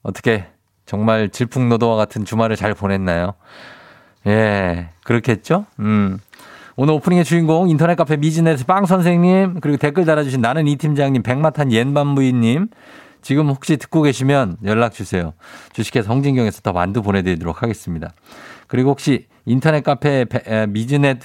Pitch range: 100-140 Hz